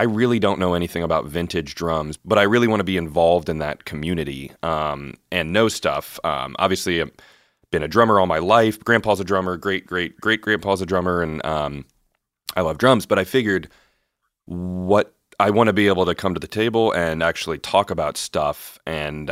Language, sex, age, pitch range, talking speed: English, male, 30-49, 75-100 Hz, 200 wpm